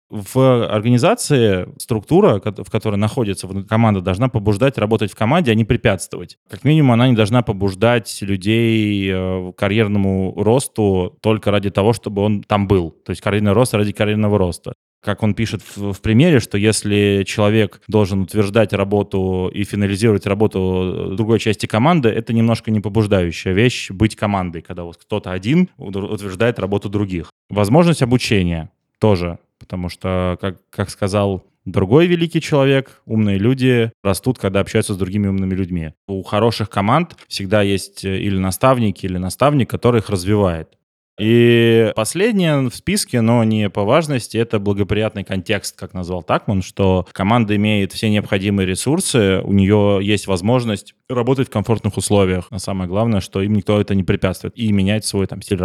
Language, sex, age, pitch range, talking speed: Russian, male, 20-39, 95-115 Hz, 155 wpm